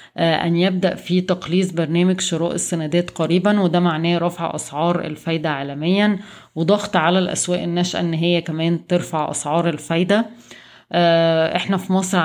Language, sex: Arabic, female